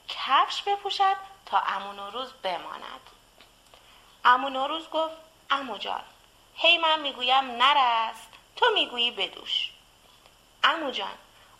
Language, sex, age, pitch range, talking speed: Persian, female, 30-49, 245-345 Hz, 95 wpm